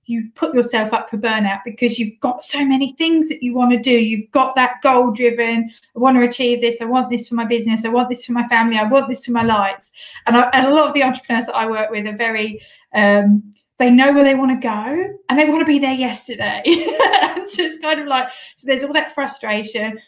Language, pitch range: English, 225-275 Hz